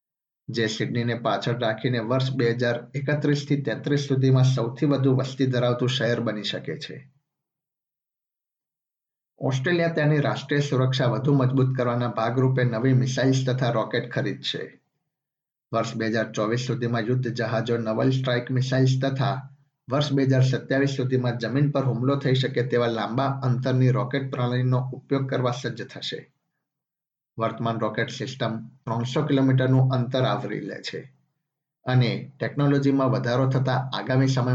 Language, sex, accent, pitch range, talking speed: Gujarati, male, native, 120-140 Hz, 60 wpm